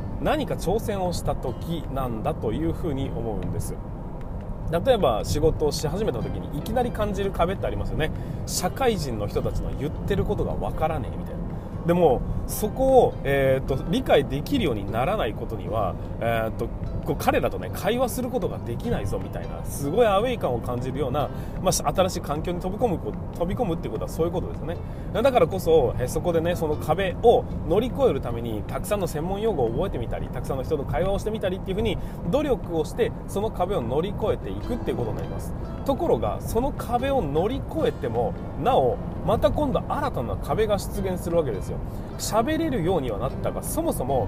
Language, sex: Japanese, male